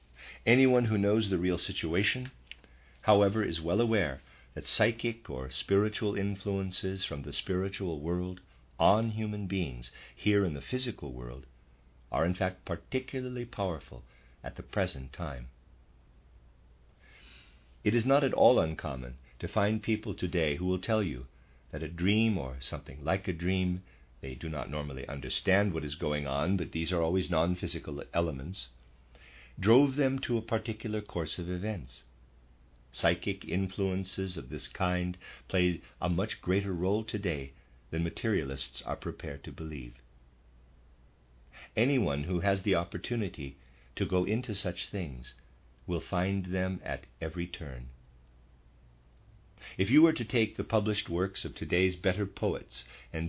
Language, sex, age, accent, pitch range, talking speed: English, male, 50-69, American, 65-100 Hz, 145 wpm